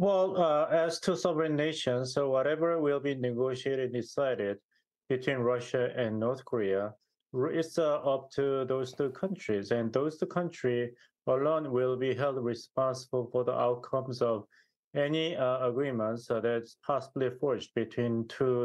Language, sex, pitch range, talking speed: English, male, 125-145 Hz, 145 wpm